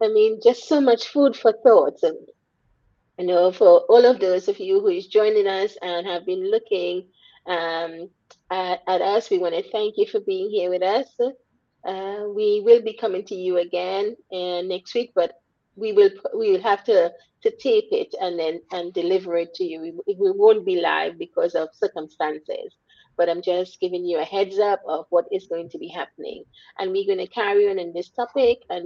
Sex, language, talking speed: female, English, 210 wpm